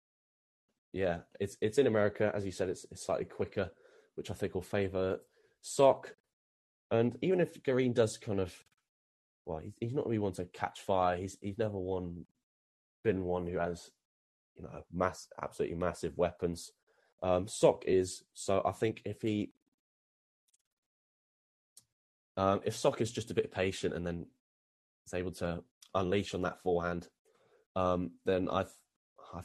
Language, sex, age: English, male, 10-29